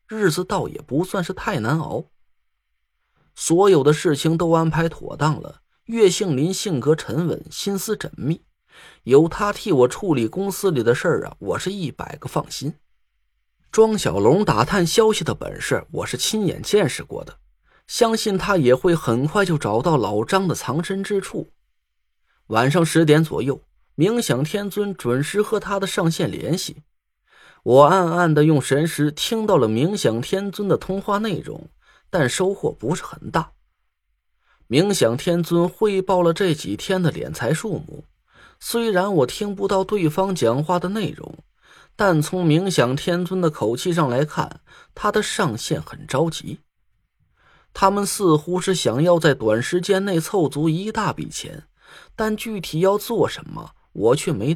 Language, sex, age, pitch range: Chinese, male, 20-39, 145-195 Hz